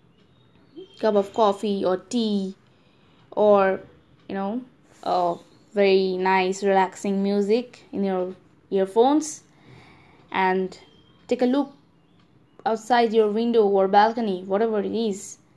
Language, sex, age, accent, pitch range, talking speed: English, female, 20-39, Indian, 195-240 Hz, 110 wpm